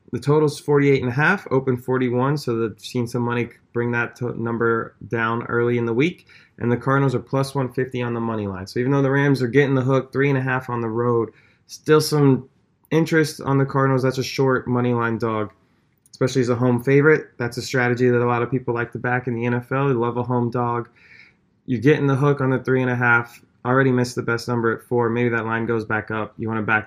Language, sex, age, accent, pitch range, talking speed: English, male, 20-39, American, 115-130 Hz, 250 wpm